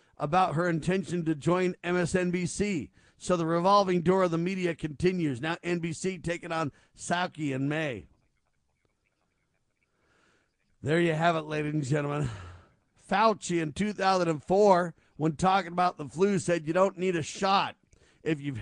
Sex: male